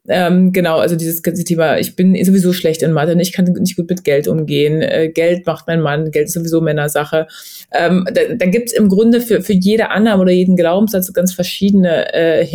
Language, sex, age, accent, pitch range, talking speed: German, female, 20-39, German, 170-195 Hz, 215 wpm